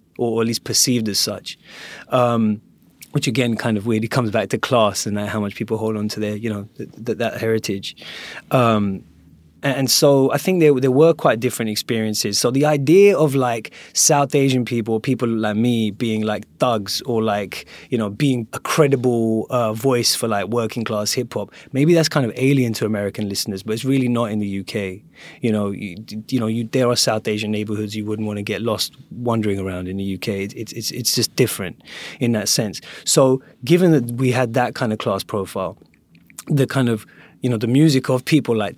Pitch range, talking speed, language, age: 105-130 Hz, 205 wpm, English, 20-39